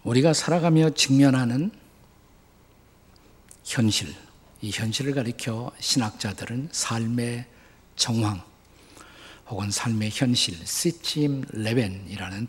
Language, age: Korean, 50-69